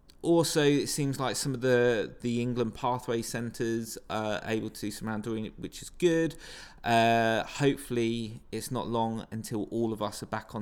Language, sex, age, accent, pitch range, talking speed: English, male, 20-39, British, 110-140 Hz, 185 wpm